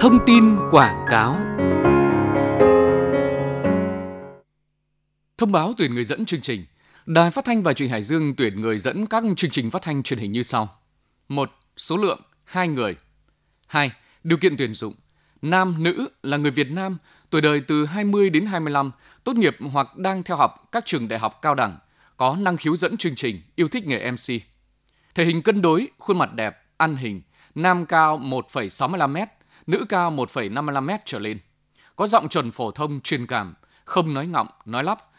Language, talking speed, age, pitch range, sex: Vietnamese, 185 wpm, 20-39, 120-175 Hz, male